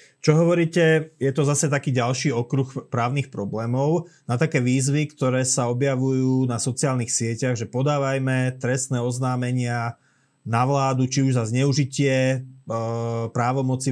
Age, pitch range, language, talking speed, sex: 30-49, 120-135 Hz, Slovak, 130 wpm, male